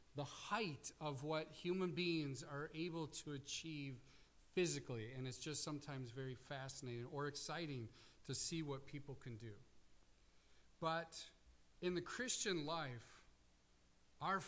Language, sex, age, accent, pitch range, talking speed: English, male, 40-59, American, 125-165 Hz, 130 wpm